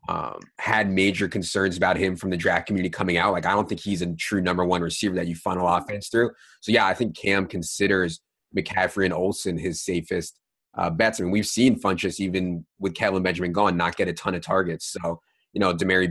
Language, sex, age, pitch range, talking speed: English, male, 30-49, 90-100 Hz, 225 wpm